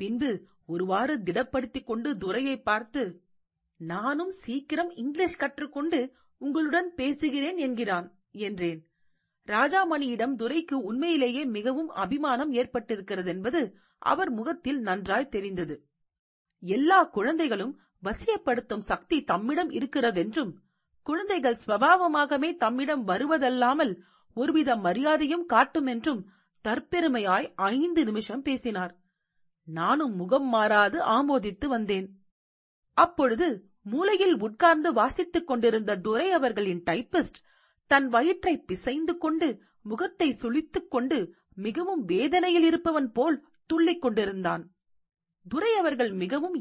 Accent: native